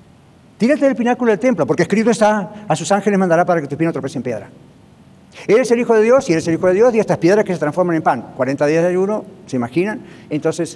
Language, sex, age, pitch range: English, male, 50-69, 145-185 Hz